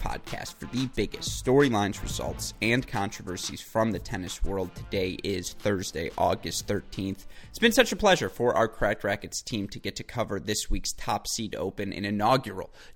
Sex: male